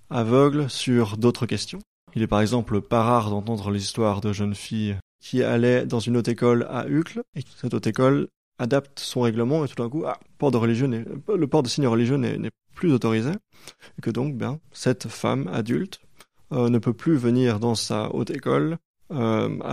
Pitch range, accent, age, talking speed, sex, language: 115-135 Hz, French, 20-39, 195 wpm, male, French